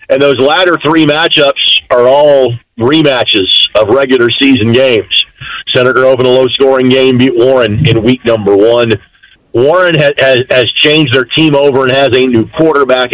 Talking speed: 170 wpm